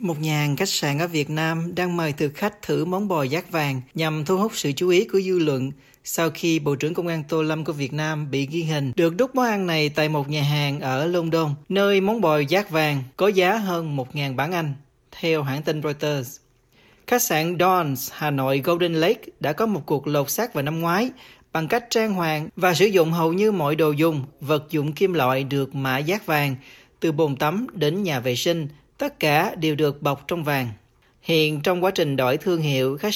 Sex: male